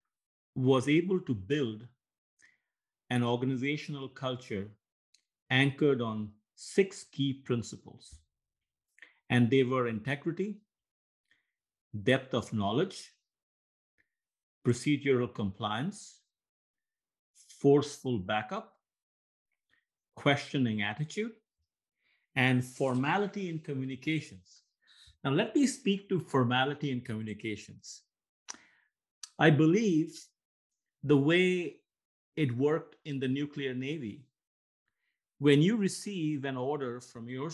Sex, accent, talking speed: male, Indian, 85 wpm